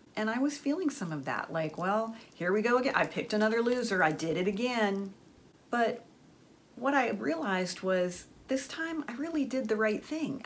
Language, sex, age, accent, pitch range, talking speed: English, female, 40-59, American, 170-225 Hz, 195 wpm